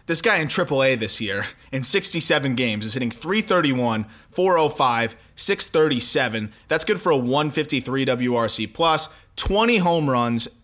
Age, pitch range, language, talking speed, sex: 20-39, 125-160 Hz, English, 135 wpm, male